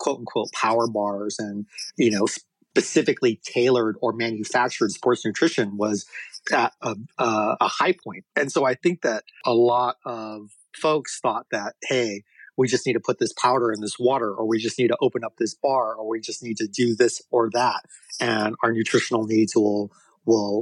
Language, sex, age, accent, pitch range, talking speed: English, male, 30-49, American, 110-135 Hz, 185 wpm